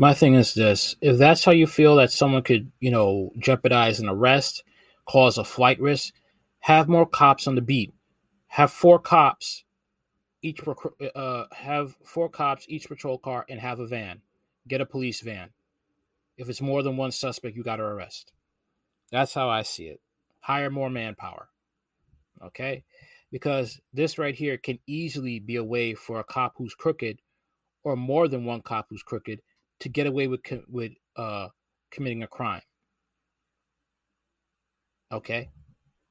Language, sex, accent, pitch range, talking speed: English, male, American, 115-140 Hz, 160 wpm